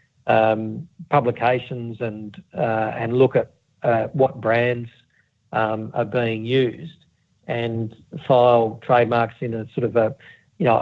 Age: 50-69